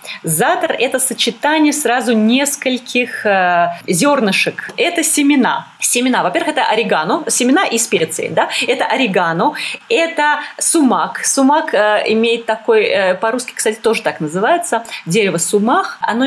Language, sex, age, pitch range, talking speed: Russian, female, 30-49, 205-290 Hz, 120 wpm